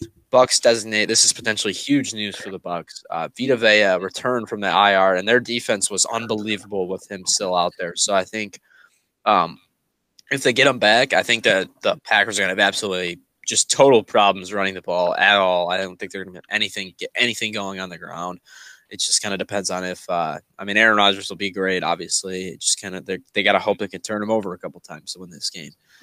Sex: male